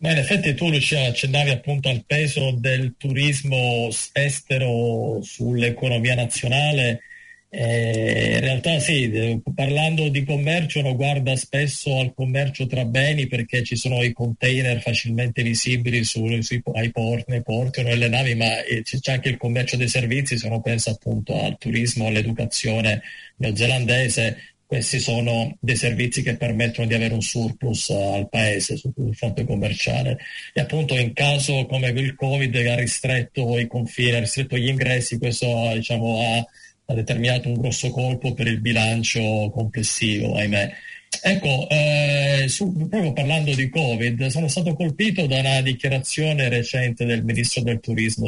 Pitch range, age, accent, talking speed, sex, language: 115-135 Hz, 40-59, native, 145 wpm, male, Italian